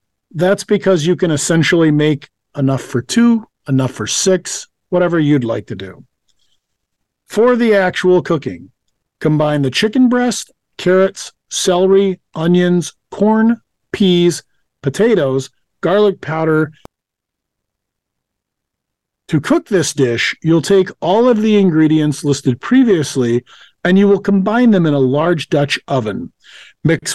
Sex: male